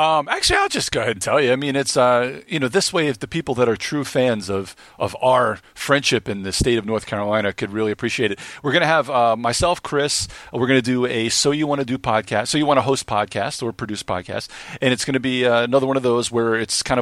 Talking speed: 275 wpm